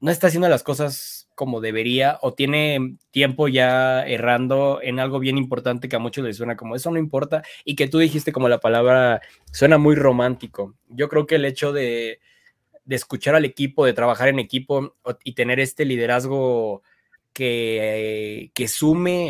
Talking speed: 175 wpm